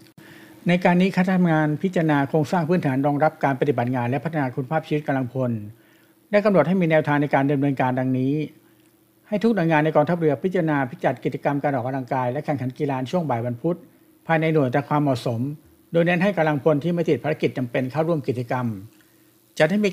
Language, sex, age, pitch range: Thai, male, 60-79, 135-165 Hz